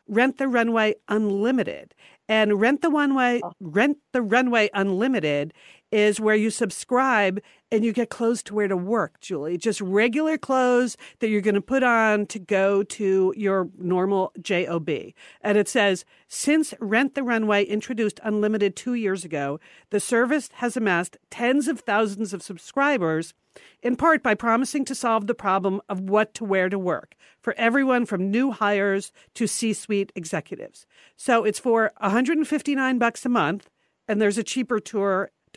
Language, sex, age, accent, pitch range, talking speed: English, female, 50-69, American, 200-250 Hz, 160 wpm